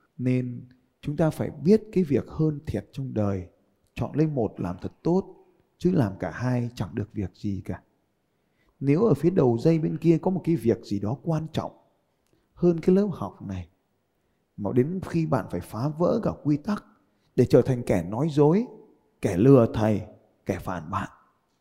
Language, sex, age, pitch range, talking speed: Vietnamese, male, 20-39, 105-165 Hz, 190 wpm